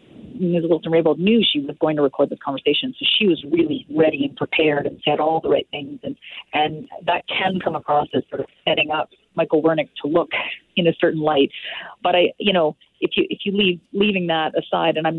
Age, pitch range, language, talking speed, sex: 40-59, 155-205 Hz, English, 225 wpm, female